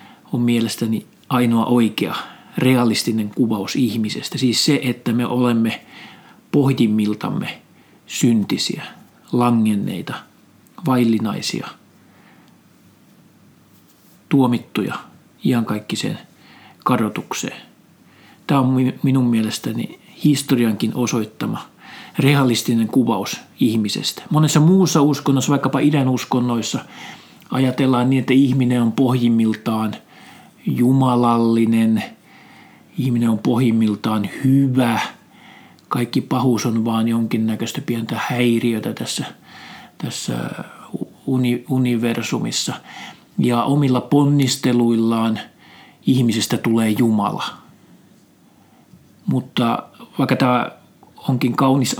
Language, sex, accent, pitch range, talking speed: Finnish, male, native, 115-135 Hz, 75 wpm